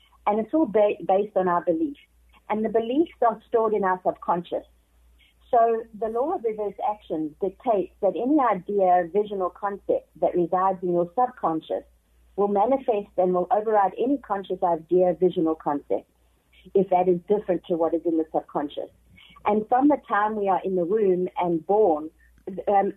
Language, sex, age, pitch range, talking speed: English, female, 50-69, 170-210 Hz, 170 wpm